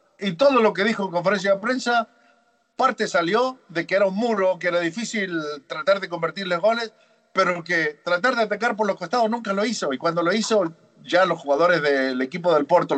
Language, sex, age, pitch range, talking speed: Spanish, male, 50-69, 145-210 Hz, 210 wpm